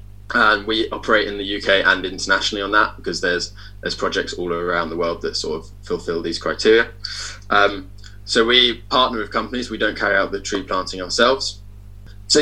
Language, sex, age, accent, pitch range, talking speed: English, male, 20-39, British, 95-105 Hz, 190 wpm